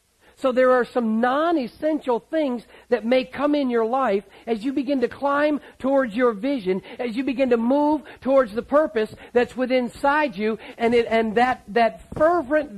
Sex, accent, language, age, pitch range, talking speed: male, American, English, 50-69, 240-290 Hz, 175 wpm